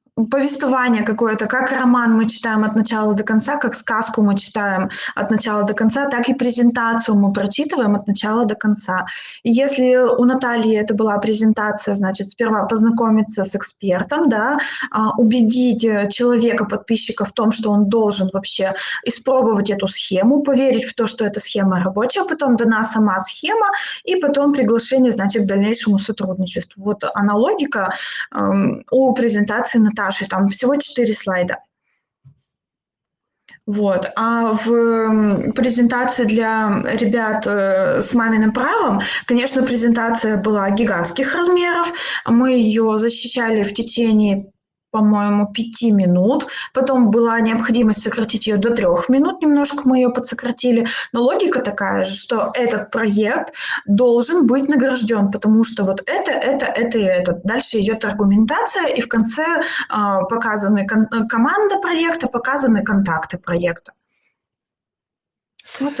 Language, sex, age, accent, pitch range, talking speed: Russian, female, 20-39, native, 210-250 Hz, 130 wpm